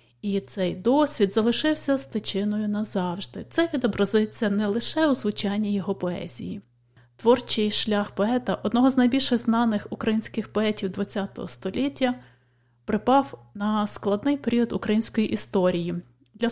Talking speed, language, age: 115 wpm, English, 20-39